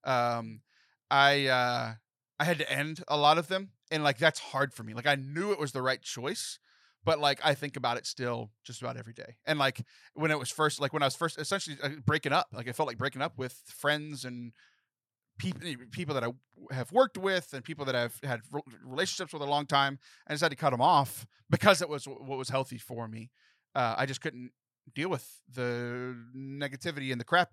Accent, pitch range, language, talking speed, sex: American, 125-160 Hz, English, 225 wpm, male